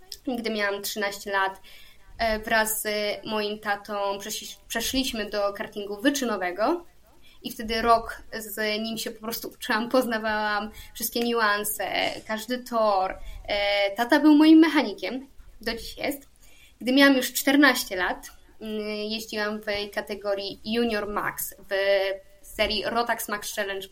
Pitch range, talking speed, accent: 205-250 Hz, 120 wpm, native